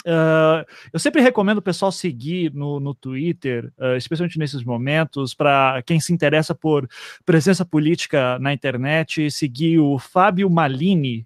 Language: Portuguese